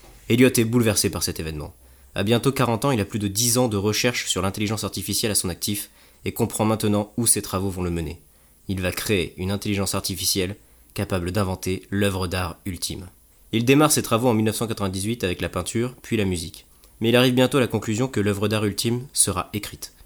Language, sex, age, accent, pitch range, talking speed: French, male, 20-39, French, 90-115 Hz, 205 wpm